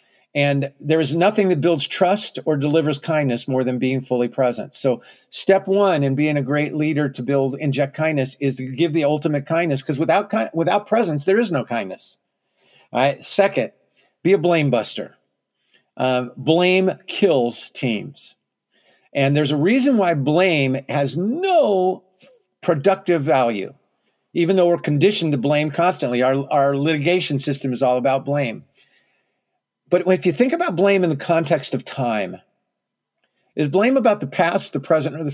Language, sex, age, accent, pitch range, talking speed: English, male, 50-69, American, 140-185 Hz, 165 wpm